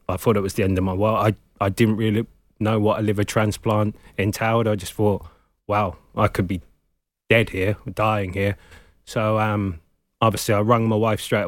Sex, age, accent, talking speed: male, 20-39, British, 200 wpm